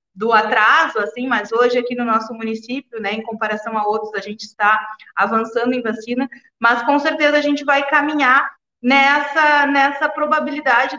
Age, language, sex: 20-39, Portuguese, female